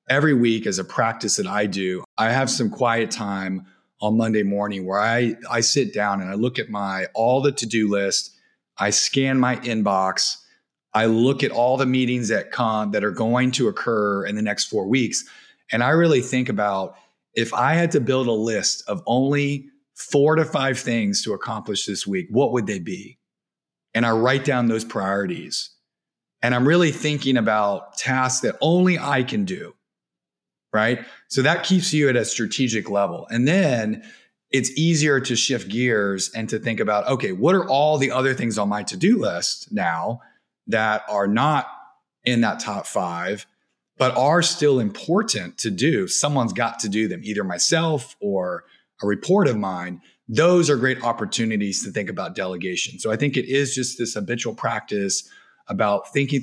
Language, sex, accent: English, male, American